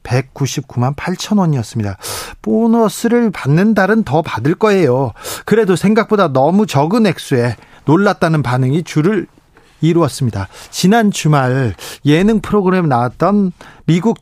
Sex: male